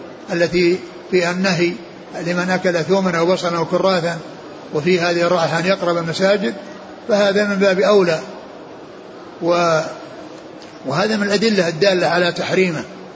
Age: 60-79